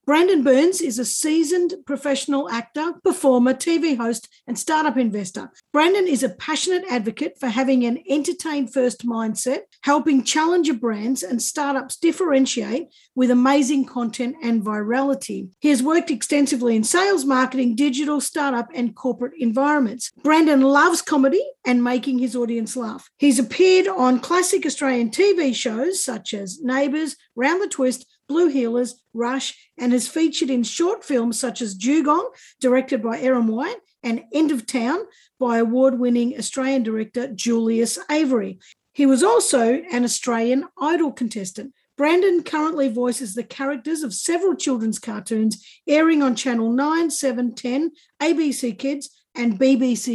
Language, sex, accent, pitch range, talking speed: English, female, Australian, 240-305 Hz, 140 wpm